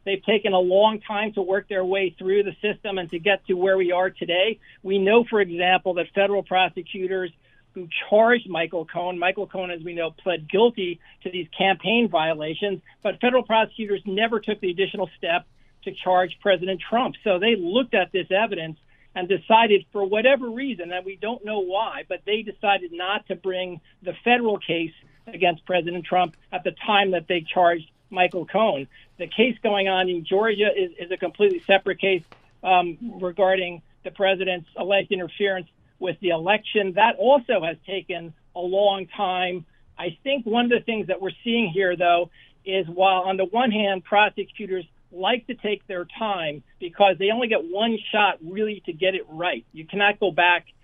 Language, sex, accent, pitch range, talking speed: English, male, American, 180-205 Hz, 185 wpm